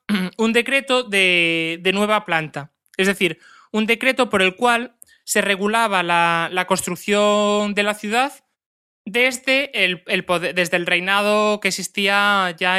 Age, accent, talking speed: 20-39, Spanish, 145 wpm